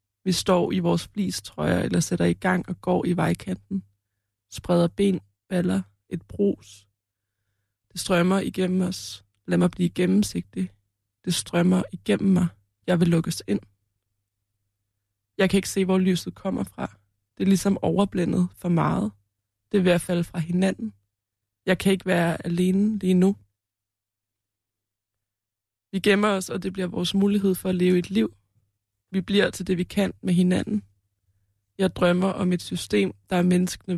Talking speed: 160 wpm